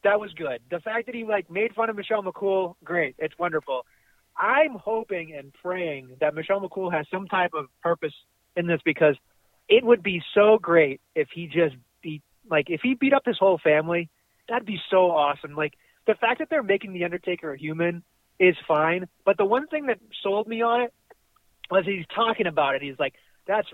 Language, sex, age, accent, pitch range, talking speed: English, male, 30-49, American, 160-235 Hz, 205 wpm